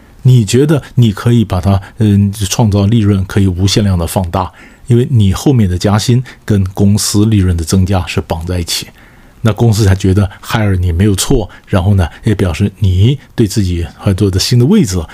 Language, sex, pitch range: Chinese, male, 95-115 Hz